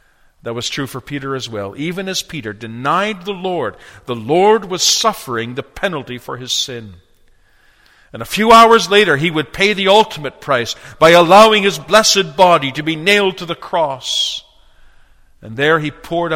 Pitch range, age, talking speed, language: 110-165 Hz, 50-69, 175 wpm, English